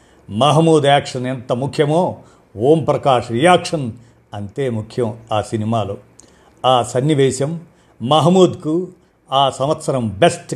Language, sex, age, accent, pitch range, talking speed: Telugu, male, 50-69, native, 115-155 Hz, 90 wpm